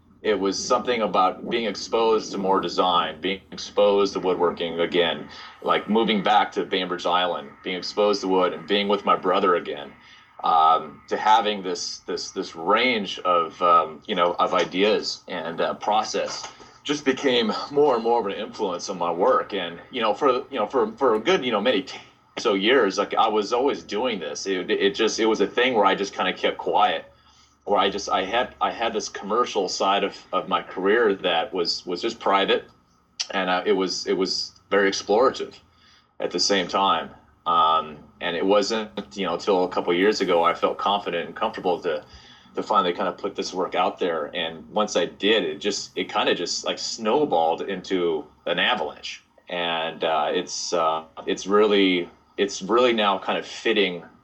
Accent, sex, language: American, male, English